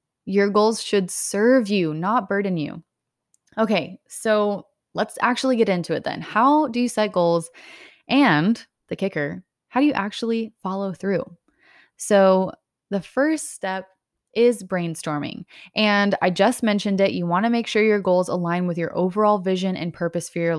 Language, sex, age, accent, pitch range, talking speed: English, female, 20-39, American, 175-225 Hz, 165 wpm